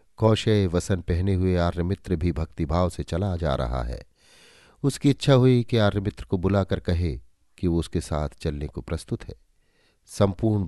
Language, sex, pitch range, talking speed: Hindi, male, 85-115 Hz, 170 wpm